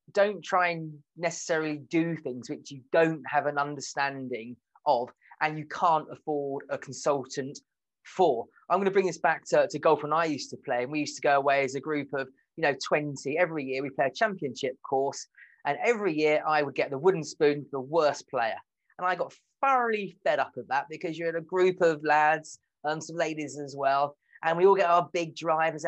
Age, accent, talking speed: 30-49, British, 220 wpm